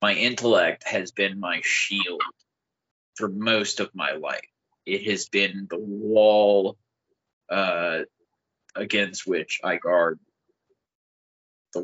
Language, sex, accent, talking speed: English, male, American, 110 wpm